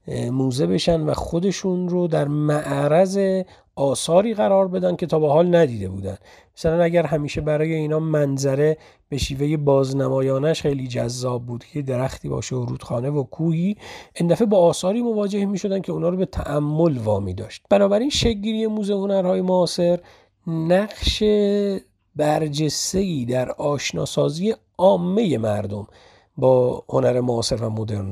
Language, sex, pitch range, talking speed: Persian, male, 125-170 Hz, 140 wpm